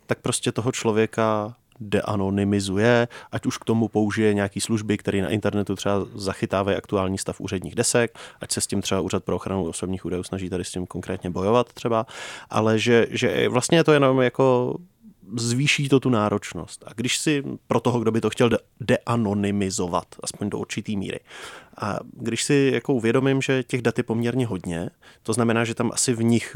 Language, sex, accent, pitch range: Czech, male, native, 100-120 Hz